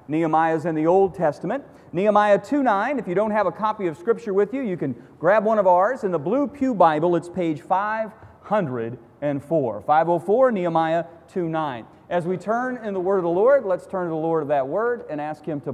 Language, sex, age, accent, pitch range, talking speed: English, male, 40-59, American, 145-200 Hz, 215 wpm